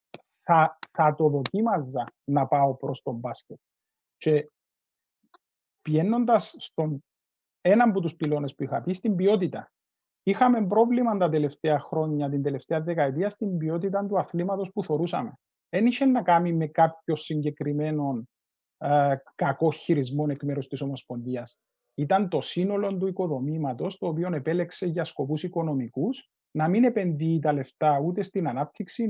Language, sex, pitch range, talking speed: Greek, male, 150-200 Hz, 140 wpm